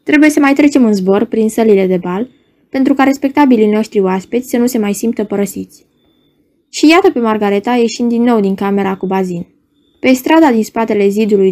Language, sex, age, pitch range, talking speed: Romanian, female, 20-39, 205-270 Hz, 195 wpm